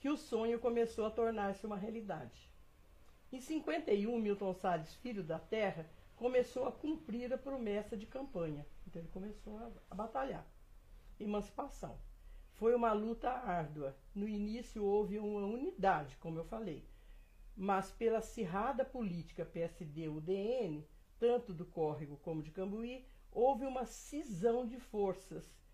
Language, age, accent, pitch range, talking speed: Portuguese, 60-79, Brazilian, 185-230 Hz, 130 wpm